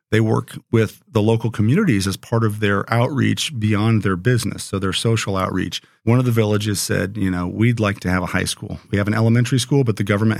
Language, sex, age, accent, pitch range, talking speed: English, male, 40-59, American, 100-120 Hz, 230 wpm